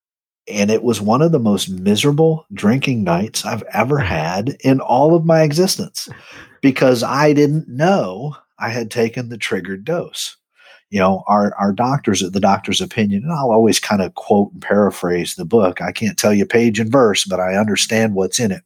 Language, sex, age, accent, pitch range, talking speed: English, male, 50-69, American, 95-145 Hz, 195 wpm